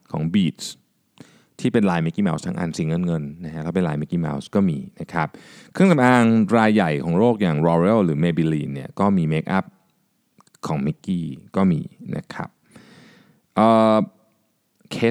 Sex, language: male, Thai